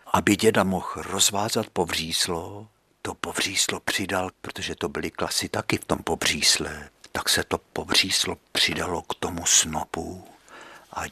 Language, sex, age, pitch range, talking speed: Czech, male, 60-79, 95-155 Hz, 135 wpm